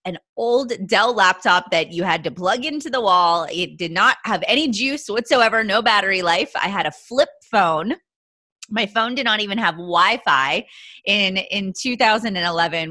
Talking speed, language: 170 wpm, English